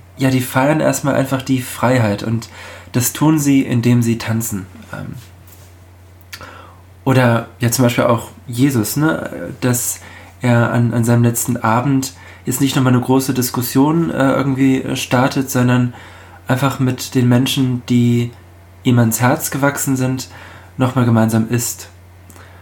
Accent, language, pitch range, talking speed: German, German, 100-130 Hz, 135 wpm